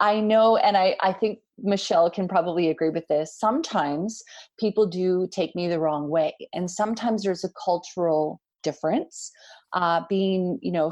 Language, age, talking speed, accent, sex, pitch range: English, 30-49, 165 wpm, American, female, 165-220 Hz